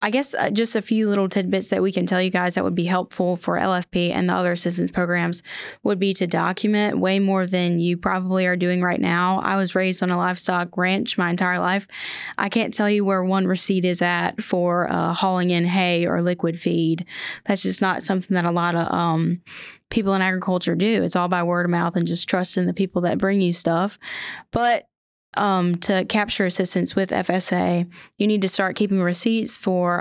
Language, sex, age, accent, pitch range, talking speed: English, female, 10-29, American, 175-200 Hz, 210 wpm